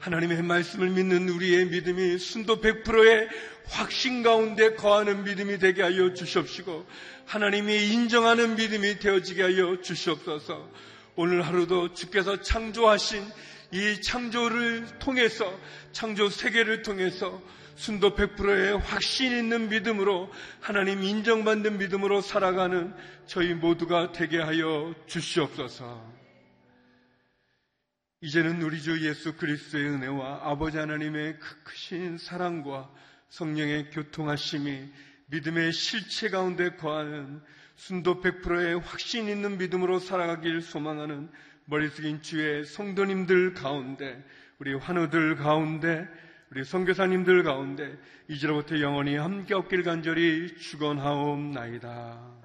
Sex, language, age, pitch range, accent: male, Korean, 40-59, 150-200 Hz, native